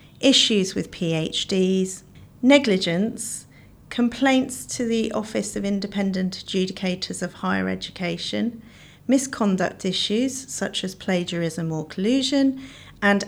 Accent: British